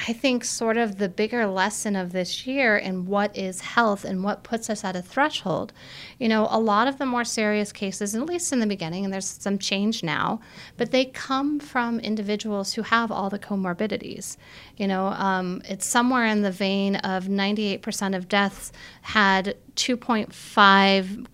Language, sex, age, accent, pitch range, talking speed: English, female, 30-49, American, 180-215 Hz, 180 wpm